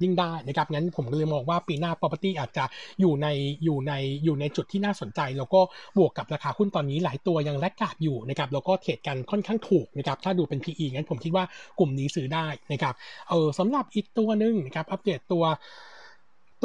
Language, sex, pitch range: Thai, male, 150-195 Hz